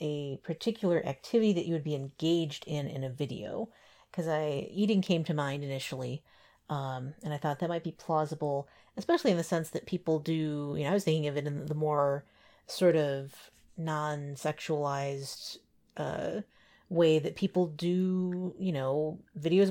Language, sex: English, female